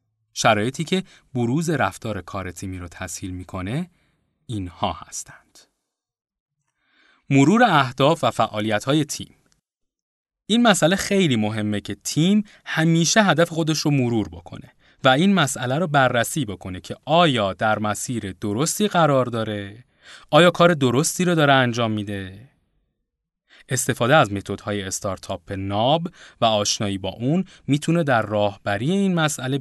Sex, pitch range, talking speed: male, 105-160 Hz, 130 wpm